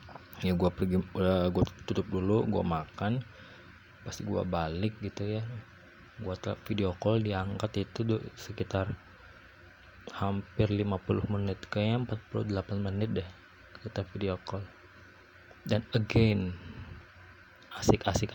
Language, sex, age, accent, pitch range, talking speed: Indonesian, male, 20-39, native, 95-115 Hz, 110 wpm